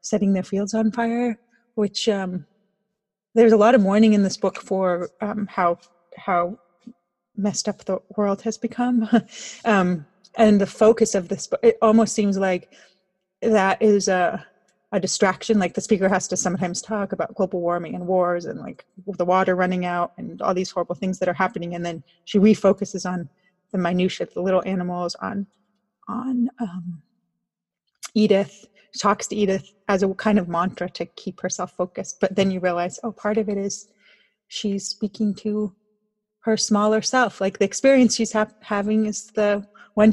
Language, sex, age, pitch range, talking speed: English, female, 30-49, 185-215 Hz, 175 wpm